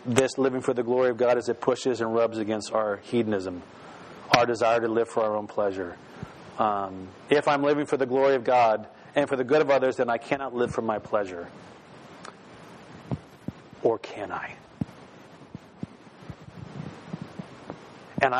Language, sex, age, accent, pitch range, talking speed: English, male, 40-59, American, 115-145 Hz, 160 wpm